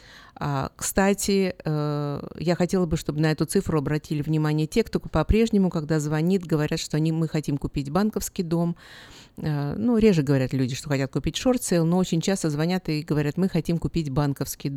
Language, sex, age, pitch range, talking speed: Russian, female, 50-69, 140-175 Hz, 170 wpm